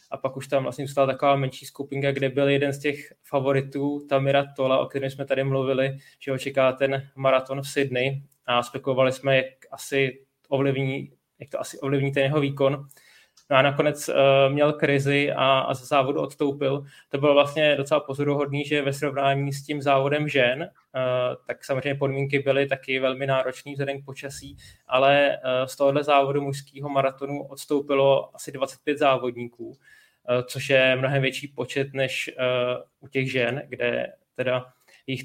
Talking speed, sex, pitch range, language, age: 165 wpm, male, 135-145 Hz, Czech, 20-39